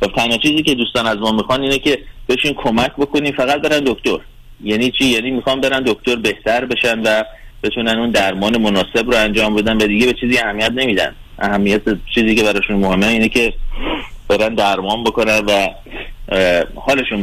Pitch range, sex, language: 105-125 Hz, male, Persian